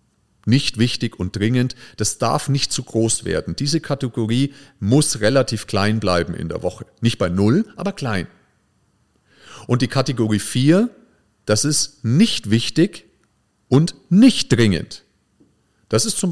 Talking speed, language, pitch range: 140 wpm, German, 105-140 Hz